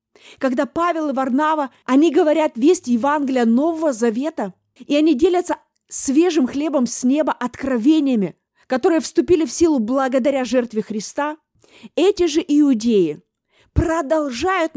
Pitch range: 255-310 Hz